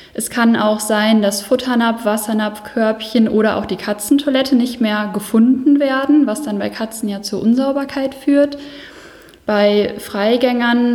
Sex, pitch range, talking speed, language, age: female, 205-255 Hz, 145 wpm, German, 10-29